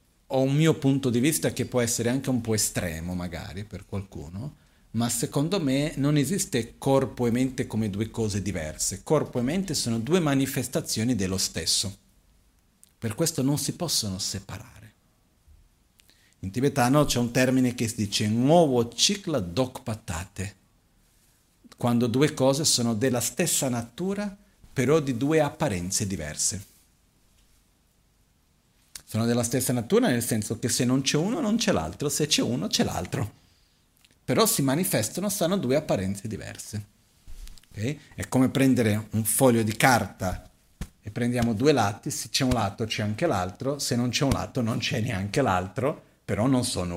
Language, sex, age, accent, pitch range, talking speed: Italian, male, 50-69, native, 100-135 Hz, 155 wpm